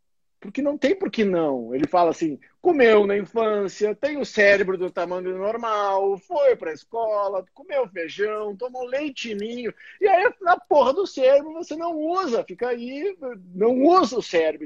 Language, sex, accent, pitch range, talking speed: Portuguese, male, Brazilian, 155-245 Hz, 170 wpm